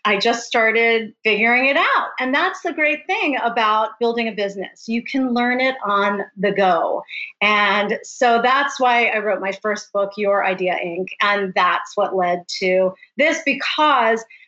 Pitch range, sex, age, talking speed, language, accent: 195-245 Hz, female, 40-59, 170 wpm, English, American